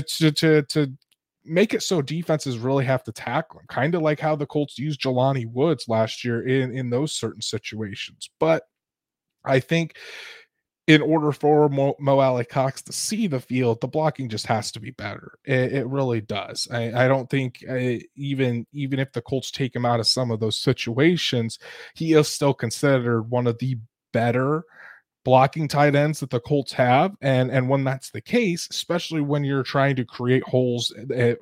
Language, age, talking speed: English, 20-39, 190 wpm